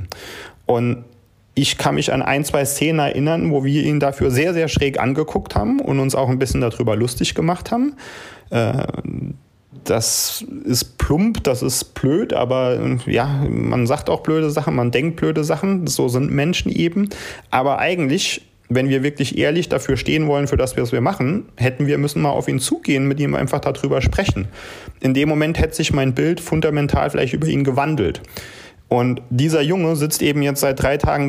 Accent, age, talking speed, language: German, 30-49, 180 wpm, German